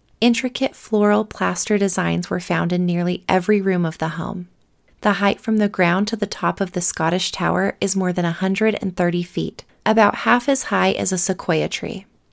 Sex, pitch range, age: female, 175-215 Hz, 30-49